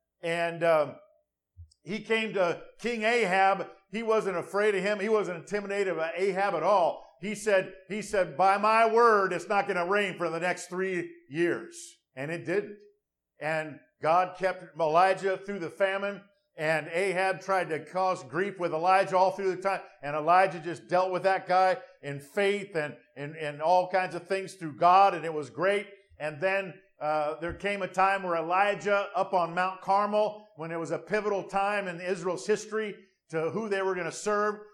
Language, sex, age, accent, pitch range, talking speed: English, male, 50-69, American, 170-200 Hz, 185 wpm